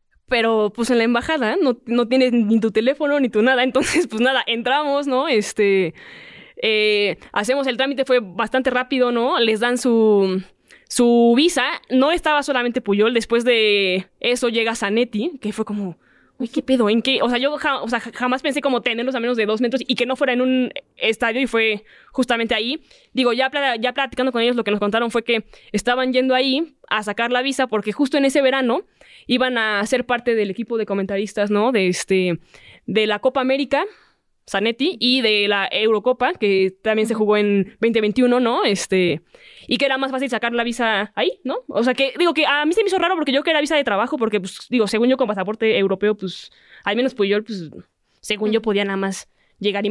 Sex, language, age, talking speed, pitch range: female, Spanish, 10-29, 210 wpm, 215-265 Hz